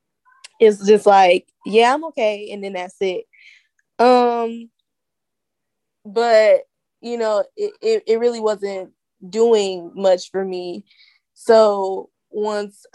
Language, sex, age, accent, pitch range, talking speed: English, female, 10-29, American, 195-230 Hz, 115 wpm